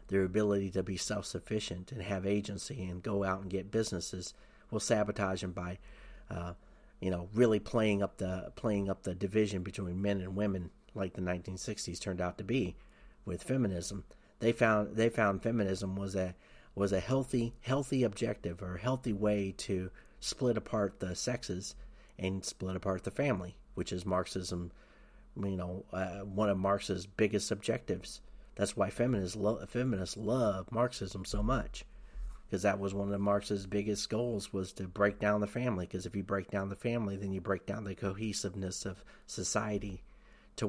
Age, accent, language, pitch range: 40-59, American, English, 95-105 Hz